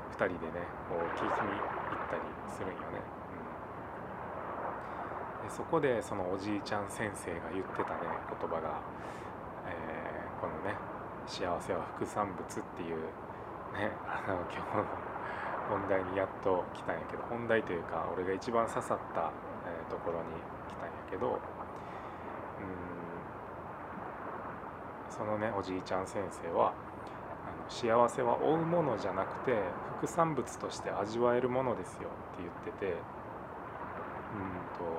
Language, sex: Japanese, male